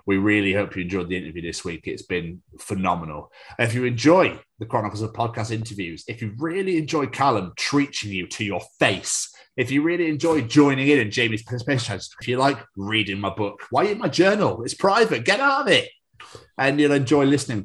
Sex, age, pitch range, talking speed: male, 30-49, 105-135 Hz, 205 wpm